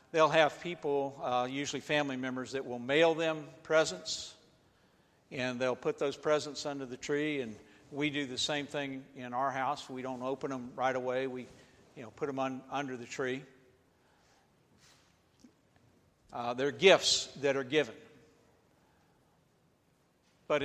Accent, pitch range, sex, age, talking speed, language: American, 125-150 Hz, male, 50-69, 150 wpm, English